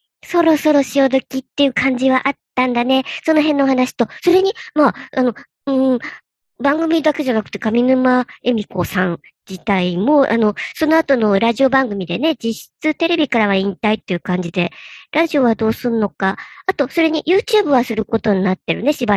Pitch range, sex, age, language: 195-285 Hz, male, 50-69, Japanese